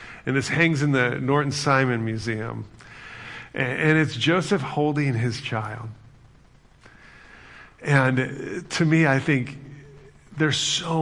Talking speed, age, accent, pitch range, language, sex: 120 wpm, 40-59, American, 115-145 Hz, English, male